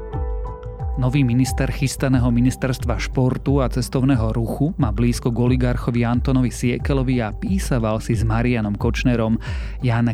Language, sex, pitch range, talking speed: Slovak, male, 115-135 Hz, 125 wpm